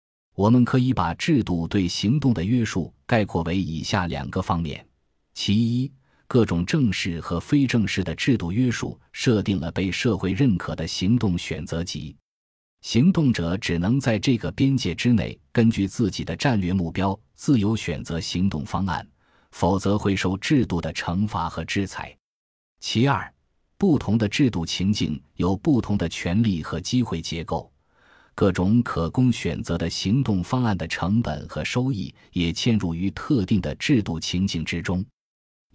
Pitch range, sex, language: 85-115 Hz, male, Chinese